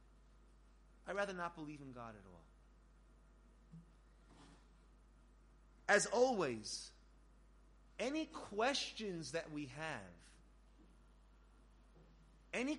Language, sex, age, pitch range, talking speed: English, male, 30-49, 180-265 Hz, 75 wpm